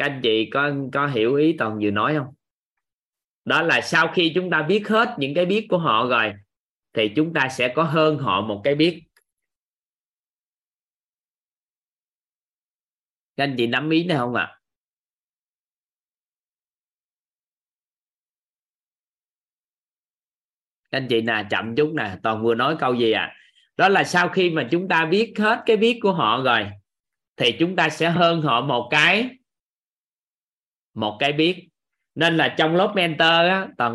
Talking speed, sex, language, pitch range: 155 wpm, male, Vietnamese, 120-170 Hz